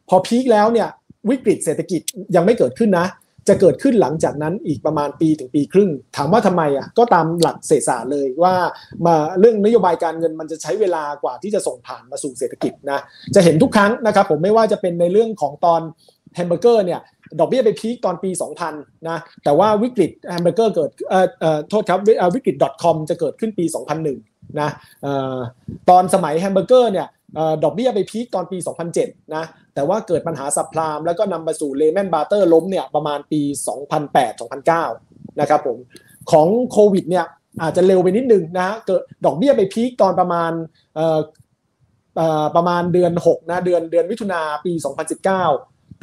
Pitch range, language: 155-200 Hz, Thai